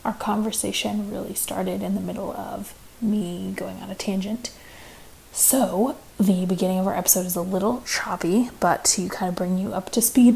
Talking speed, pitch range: 185 wpm, 185-220 Hz